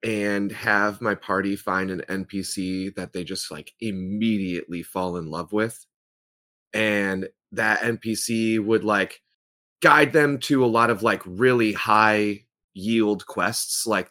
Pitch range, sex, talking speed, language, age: 95-110 Hz, male, 140 wpm, English, 30-49